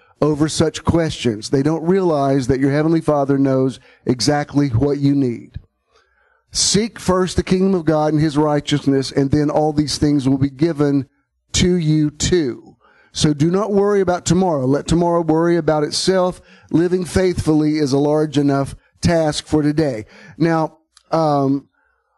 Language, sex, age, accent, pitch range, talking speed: English, male, 50-69, American, 140-170 Hz, 155 wpm